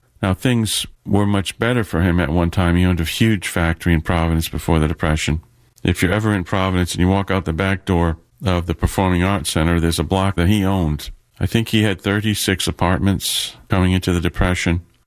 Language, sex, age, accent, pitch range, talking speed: English, male, 50-69, American, 85-105 Hz, 210 wpm